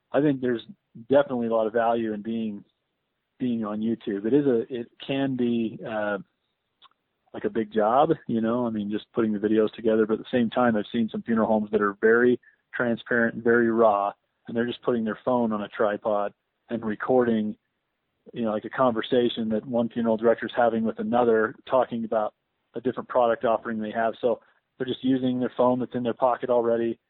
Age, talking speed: 40-59, 205 wpm